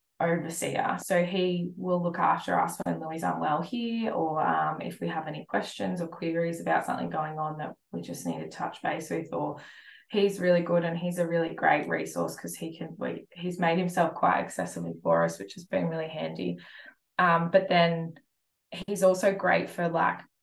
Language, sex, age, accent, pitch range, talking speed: English, female, 20-39, Australian, 160-185 Hz, 195 wpm